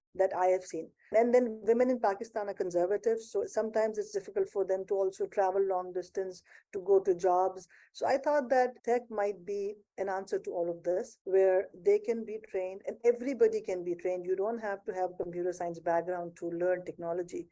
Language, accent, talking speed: English, Indian, 210 wpm